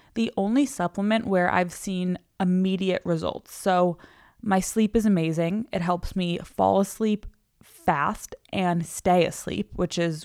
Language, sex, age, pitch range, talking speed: English, female, 20-39, 170-200 Hz, 140 wpm